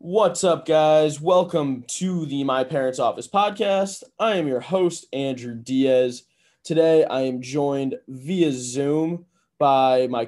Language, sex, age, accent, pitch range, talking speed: English, male, 20-39, American, 130-160 Hz, 140 wpm